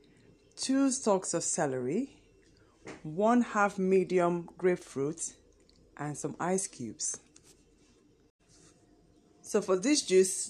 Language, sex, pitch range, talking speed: English, female, 155-205 Hz, 90 wpm